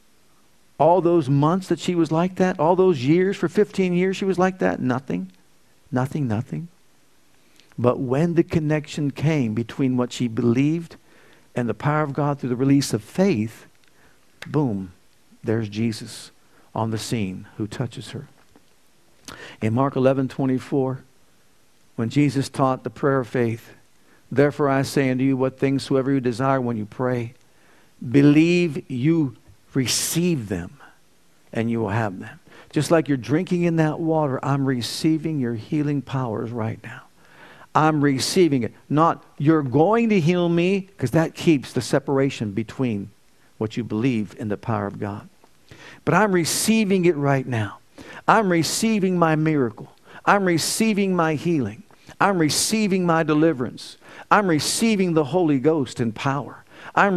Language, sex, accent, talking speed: English, male, American, 150 wpm